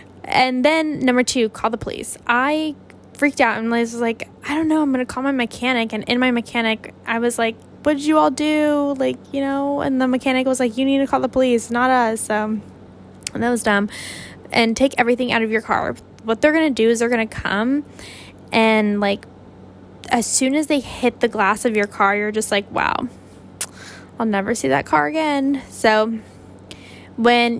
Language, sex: English, female